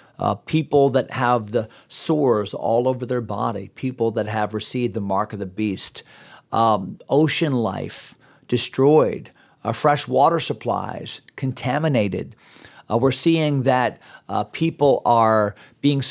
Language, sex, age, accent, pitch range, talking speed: English, male, 40-59, American, 120-155 Hz, 135 wpm